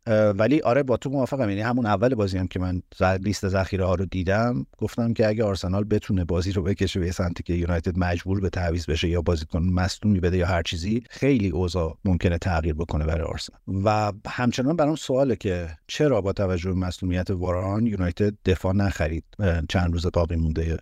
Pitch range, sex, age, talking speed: 85-105 Hz, male, 50-69, 185 wpm